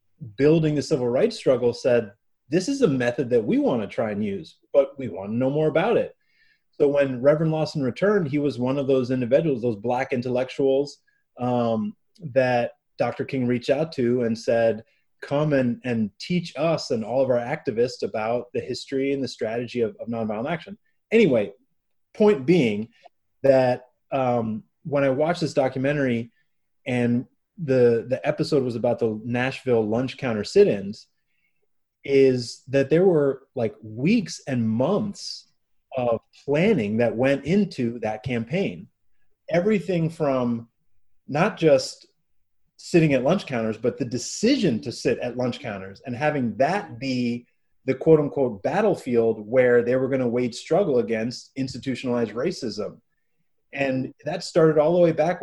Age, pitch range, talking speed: 30-49, 120-155 Hz, 155 wpm